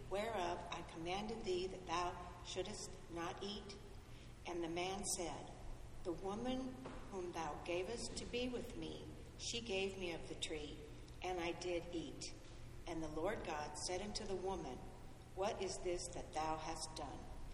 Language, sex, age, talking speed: English, female, 60-79, 160 wpm